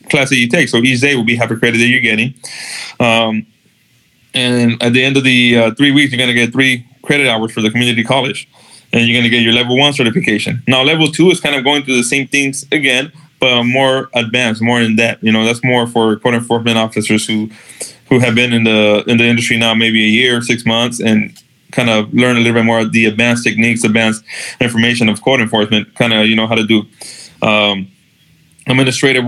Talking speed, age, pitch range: 230 wpm, 20-39, 115-130 Hz